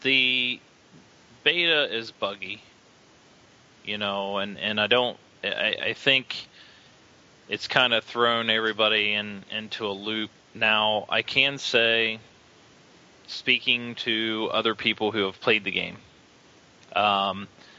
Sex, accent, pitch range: male, American, 105-125 Hz